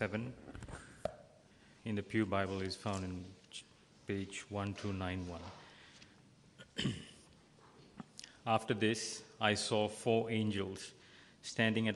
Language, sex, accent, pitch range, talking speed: English, male, Indian, 105-120 Hz, 90 wpm